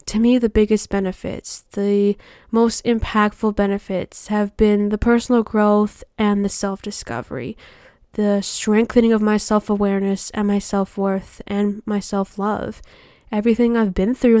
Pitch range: 200-225 Hz